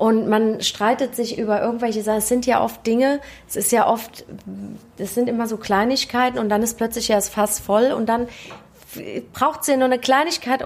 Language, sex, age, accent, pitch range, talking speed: German, female, 30-49, German, 200-240 Hz, 205 wpm